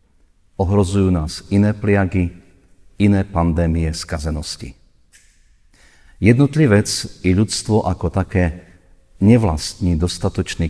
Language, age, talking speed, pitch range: Slovak, 50-69, 80 wpm, 80-95 Hz